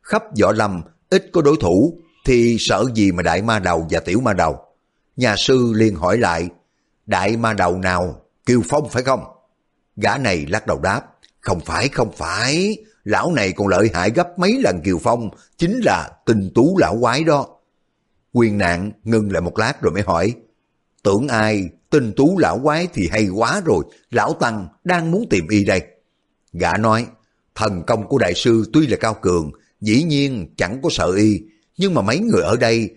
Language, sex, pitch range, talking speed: Vietnamese, male, 95-135 Hz, 195 wpm